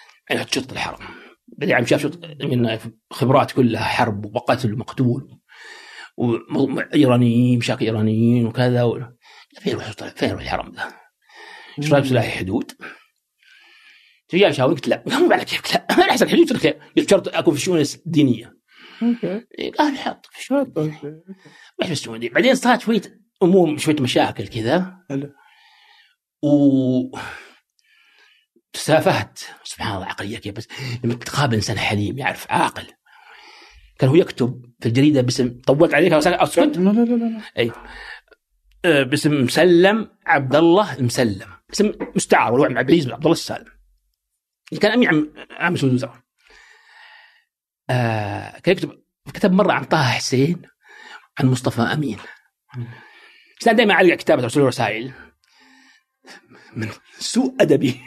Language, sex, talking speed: Arabic, male, 125 wpm